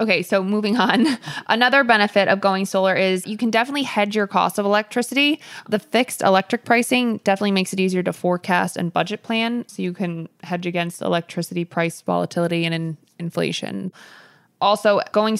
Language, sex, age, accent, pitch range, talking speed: English, female, 20-39, American, 175-205 Hz, 170 wpm